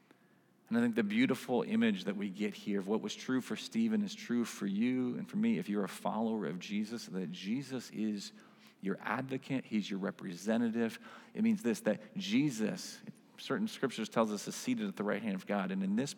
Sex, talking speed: male, 210 wpm